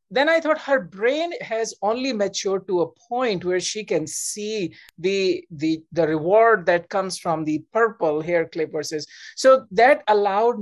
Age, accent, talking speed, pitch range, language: 50-69, Indian, 170 wpm, 175-215 Hz, English